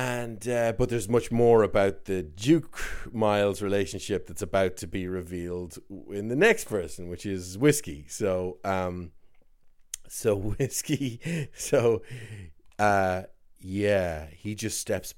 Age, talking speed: 30-49, 125 wpm